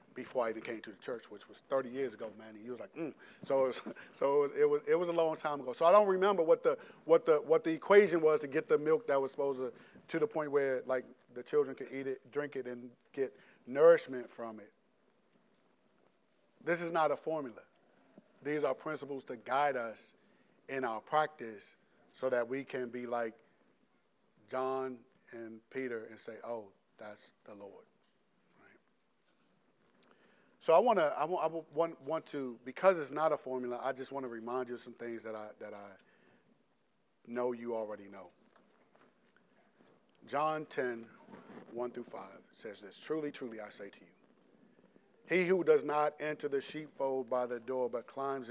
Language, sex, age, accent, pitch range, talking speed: English, male, 40-59, American, 125-170 Hz, 190 wpm